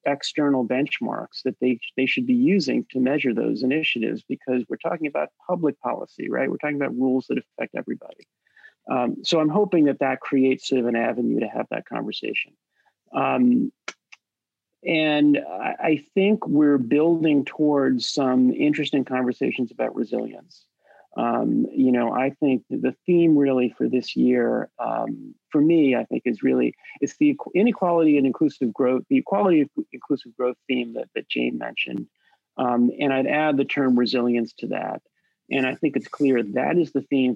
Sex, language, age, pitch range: male, English, 40-59, 125-155 Hz